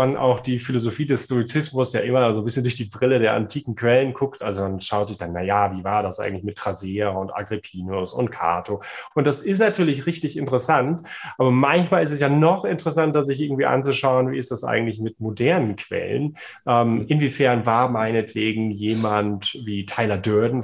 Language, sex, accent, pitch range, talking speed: German, male, German, 105-135 Hz, 185 wpm